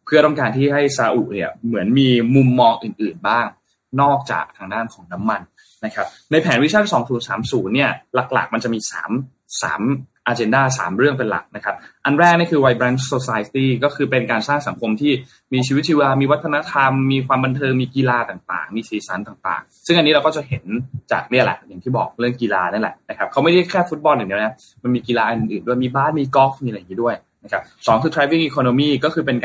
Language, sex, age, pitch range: Thai, male, 20-39, 120-145 Hz